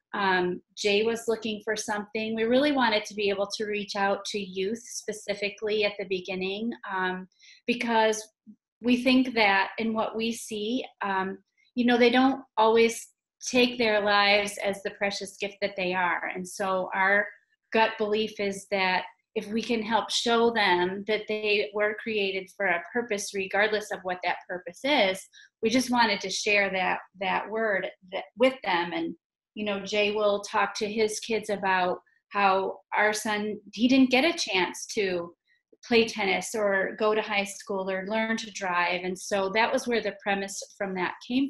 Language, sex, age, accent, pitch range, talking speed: English, female, 30-49, American, 195-230 Hz, 180 wpm